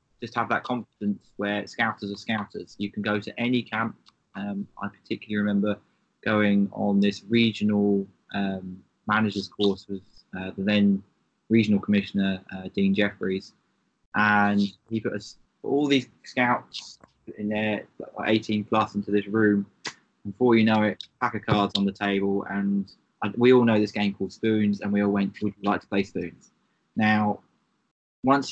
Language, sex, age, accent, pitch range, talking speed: English, male, 20-39, British, 100-120 Hz, 165 wpm